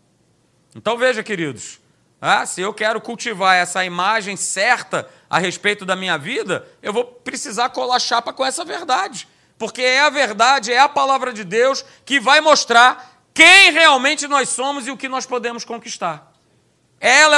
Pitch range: 210-295 Hz